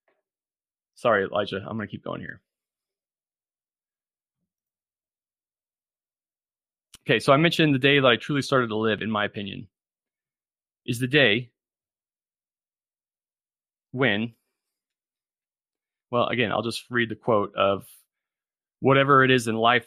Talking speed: 120 wpm